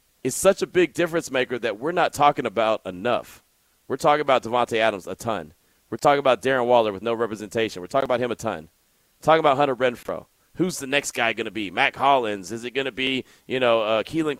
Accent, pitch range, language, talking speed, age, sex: American, 110-145 Hz, English, 235 wpm, 30-49, male